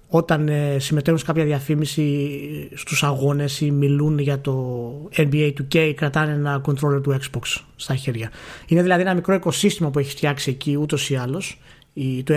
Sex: male